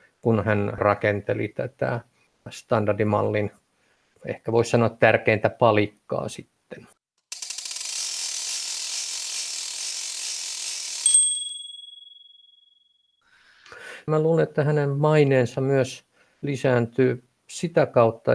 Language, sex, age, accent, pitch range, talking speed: Finnish, male, 50-69, native, 110-145 Hz, 65 wpm